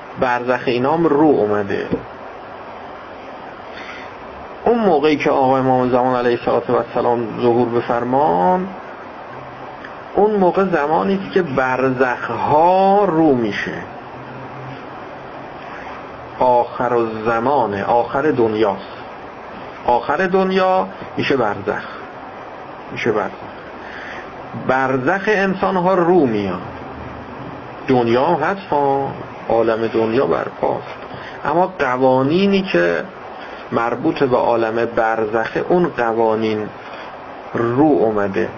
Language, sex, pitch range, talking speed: Persian, male, 120-175 Hz, 85 wpm